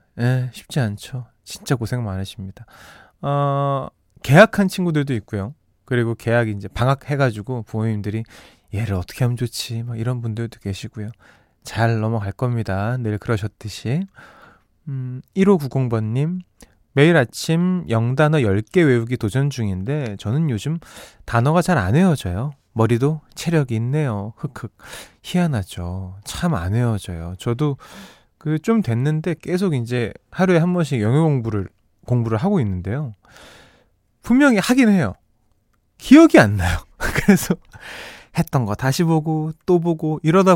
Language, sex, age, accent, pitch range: Korean, male, 20-39, native, 110-160 Hz